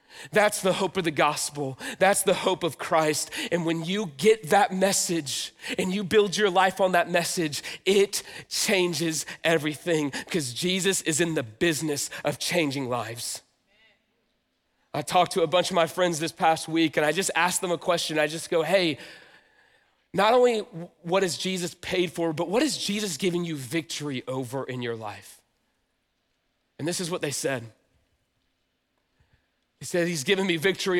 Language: English